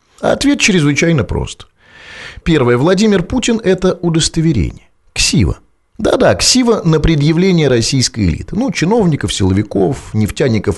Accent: native